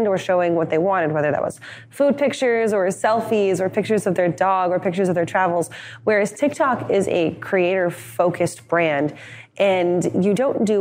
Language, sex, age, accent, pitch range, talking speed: English, female, 20-39, American, 150-190 Hz, 180 wpm